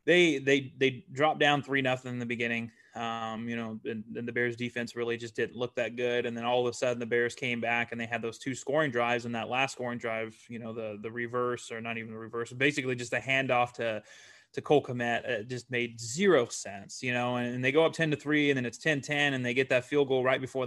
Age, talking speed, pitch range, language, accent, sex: 20-39, 265 wpm, 120-145 Hz, English, American, male